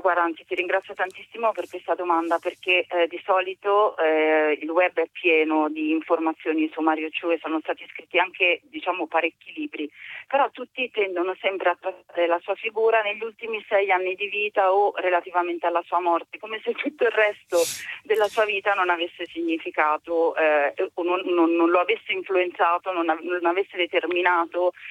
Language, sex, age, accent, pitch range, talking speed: Italian, female, 40-59, native, 160-200 Hz, 175 wpm